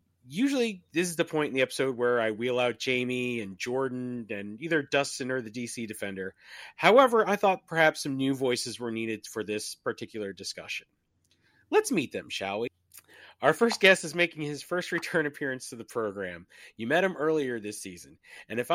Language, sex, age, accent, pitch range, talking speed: English, male, 30-49, American, 115-160 Hz, 190 wpm